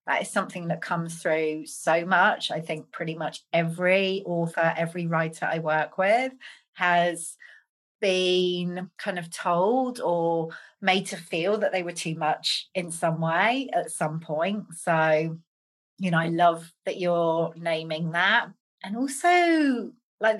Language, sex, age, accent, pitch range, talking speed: English, female, 40-59, British, 170-220 Hz, 150 wpm